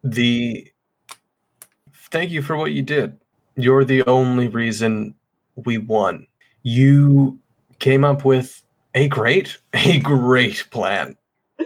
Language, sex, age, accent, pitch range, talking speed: English, male, 20-39, American, 115-135 Hz, 115 wpm